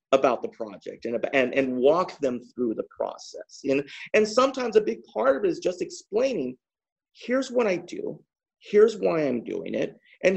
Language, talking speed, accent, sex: English, 185 wpm, American, male